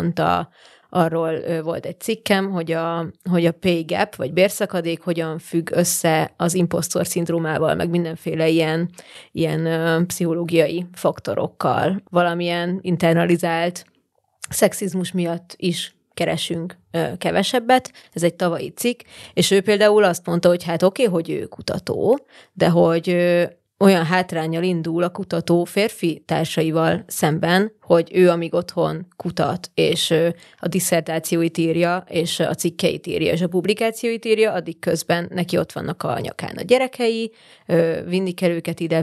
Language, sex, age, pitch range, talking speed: Hungarian, female, 20-39, 165-185 Hz, 135 wpm